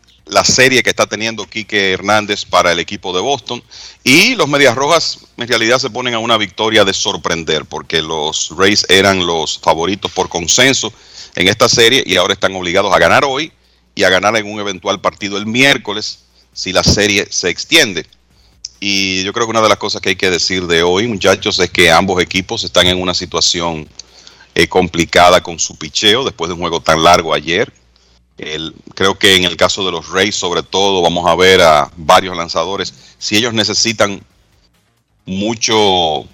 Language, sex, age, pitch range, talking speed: Spanish, male, 40-59, 85-110 Hz, 185 wpm